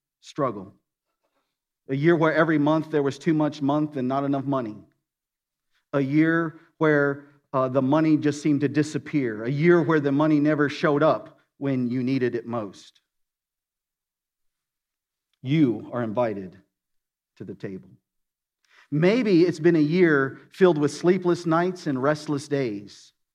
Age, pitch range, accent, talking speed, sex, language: 50-69, 130-165 Hz, American, 145 wpm, male, English